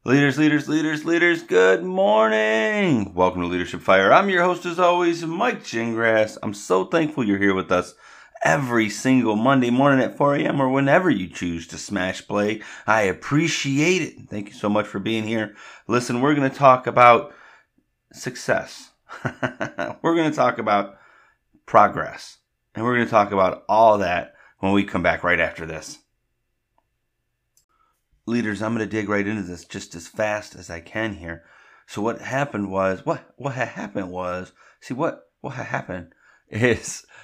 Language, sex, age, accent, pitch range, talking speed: English, male, 30-49, American, 95-125 Hz, 165 wpm